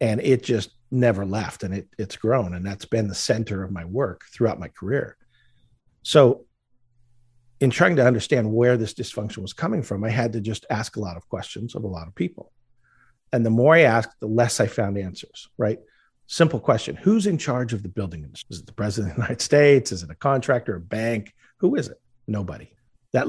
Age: 50-69